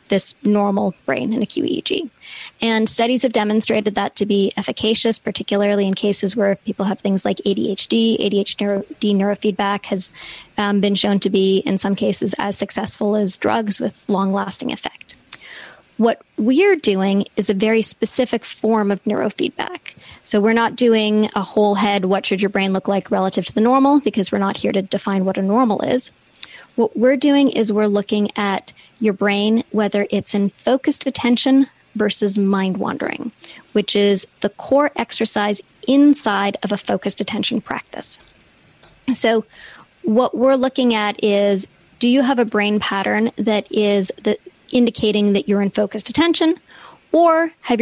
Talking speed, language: 165 wpm, English